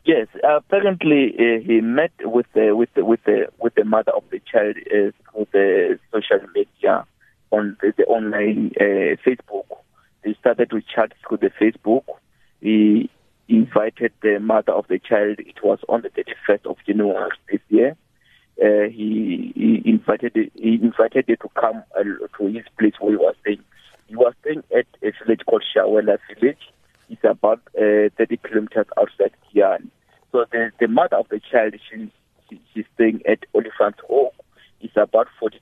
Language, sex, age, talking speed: English, male, 50-69, 165 wpm